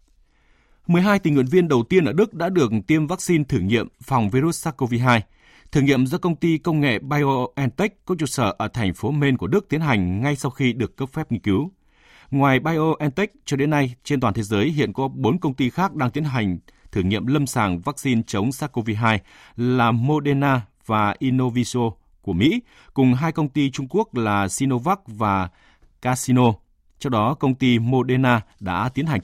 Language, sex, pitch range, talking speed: Vietnamese, male, 105-140 Hz, 190 wpm